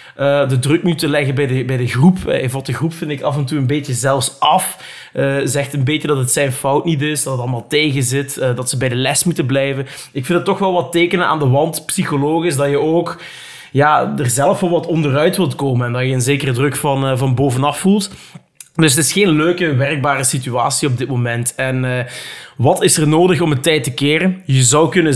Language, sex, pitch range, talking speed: Dutch, male, 130-155 Hz, 245 wpm